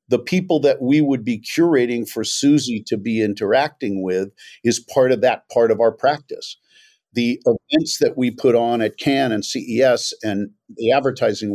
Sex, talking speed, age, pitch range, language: male, 175 wpm, 50-69, 110-140 Hz, English